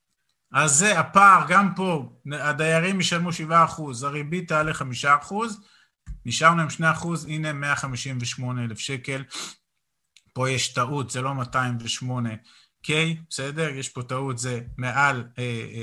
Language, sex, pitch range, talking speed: Hebrew, male, 130-165 Hz, 110 wpm